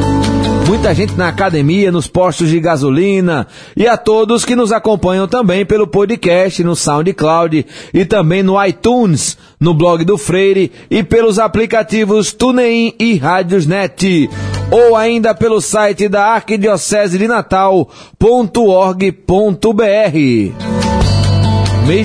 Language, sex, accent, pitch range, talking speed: Portuguese, male, Brazilian, 155-205 Hz, 115 wpm